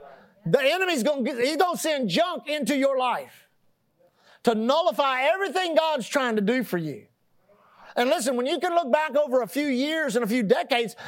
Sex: male